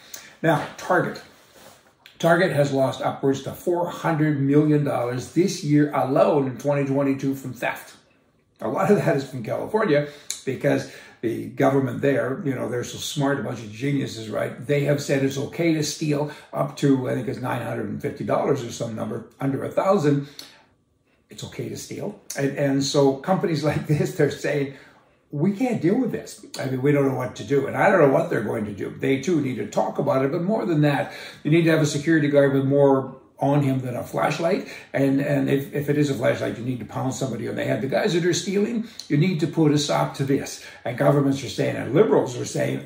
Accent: American